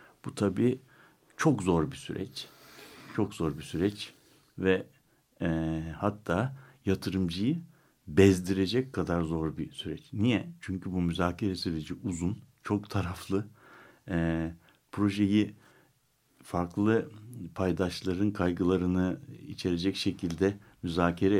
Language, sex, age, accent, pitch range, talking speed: Turkish, male, 60-79, native, 85-105 Hz, 95 wpm